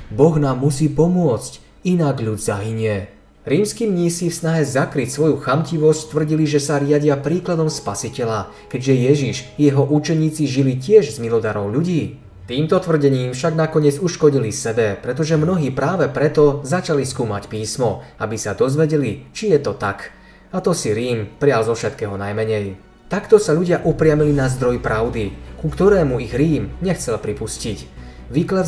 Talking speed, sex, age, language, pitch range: 150 wpm, male, 20-39, Slovak, 115-155 Hz